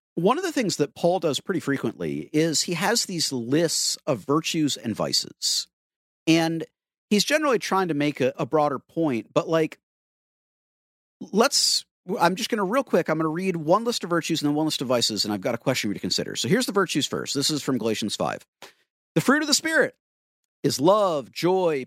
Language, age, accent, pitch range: English, 50-69, American, 145-200 Hz